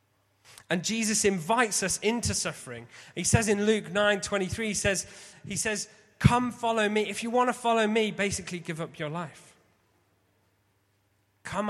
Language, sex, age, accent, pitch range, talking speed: English, male, 30-49, British, 155-205 Hz, 160 wpm